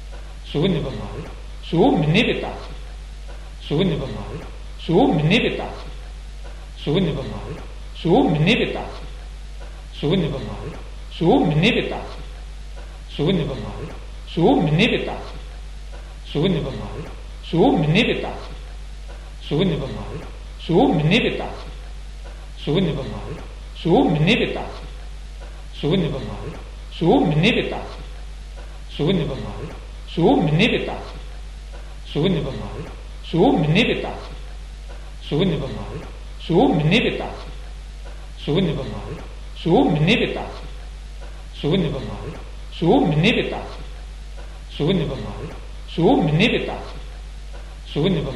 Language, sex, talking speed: Italian, male, 85 wpm